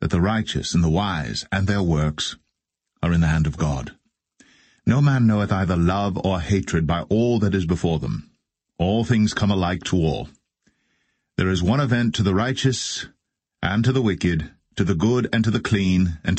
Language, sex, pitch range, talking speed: English, male, 85-110 Hz, 195 wpm